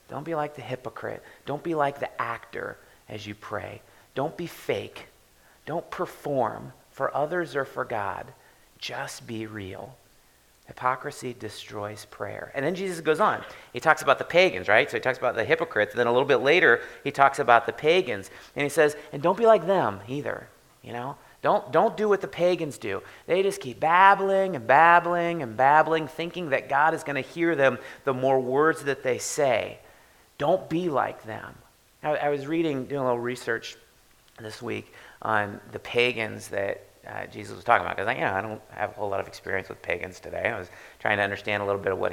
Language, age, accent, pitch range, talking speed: English, 30-49, American, 110-160 Hz, 205 wpm